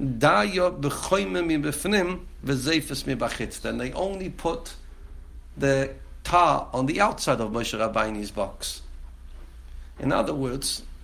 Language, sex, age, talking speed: English, male, 60-79, 85 wpm